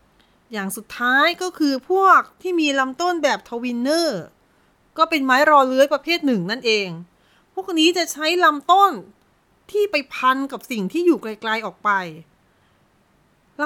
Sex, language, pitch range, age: female, Thai, 235-330 Hz, 30-49